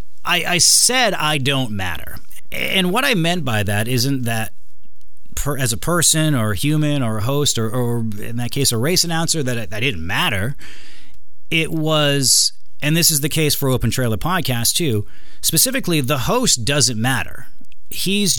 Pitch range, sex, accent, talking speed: 105-160 Hz, male, American, 180 wpm